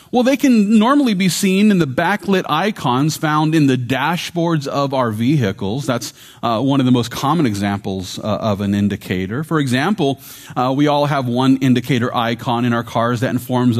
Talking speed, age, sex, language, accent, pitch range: 185 wpm, 30-49, male, English, American, 120-170 Hz